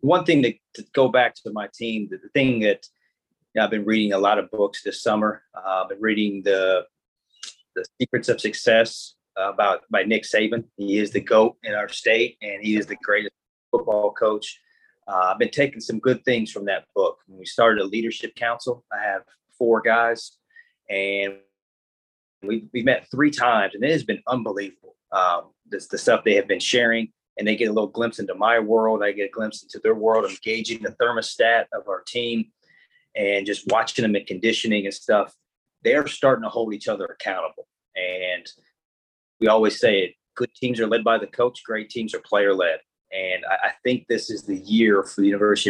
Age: 30-49